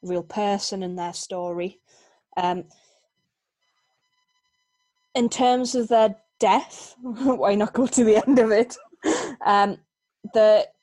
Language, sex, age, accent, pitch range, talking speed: English, female, 20-39, British, 185-215 Hz, 115 wpm